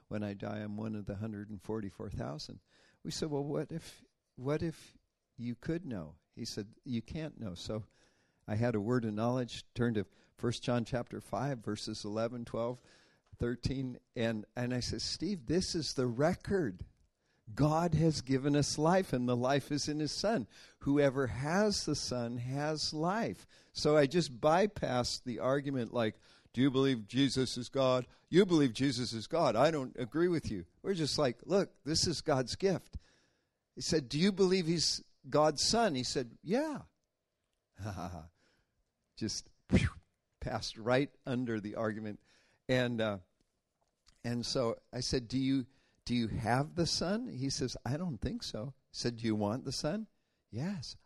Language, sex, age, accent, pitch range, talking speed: English, male, 50-69, American, 110-145 Hz, 175 wpm